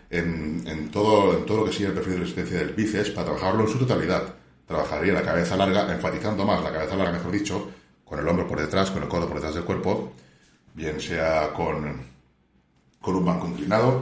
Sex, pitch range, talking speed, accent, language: male, 85-115 Hz, 210 wpm, Spanish, Spanish